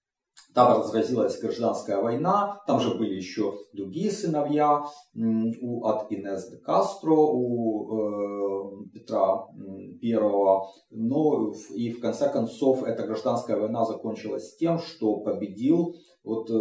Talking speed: 115 wpm